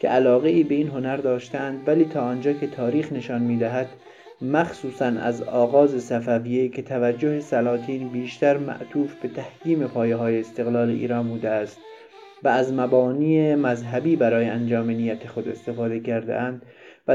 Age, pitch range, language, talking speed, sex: 30-49, 125-155 Hz, Persian, 155 wpm, male